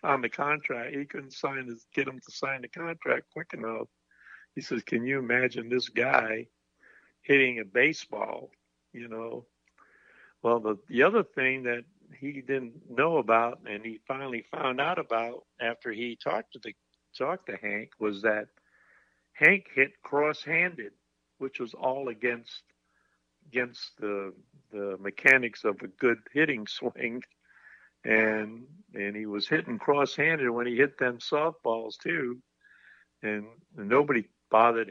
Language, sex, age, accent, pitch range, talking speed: English, male, 60-79, American, 110-135 Hz, 145 wpm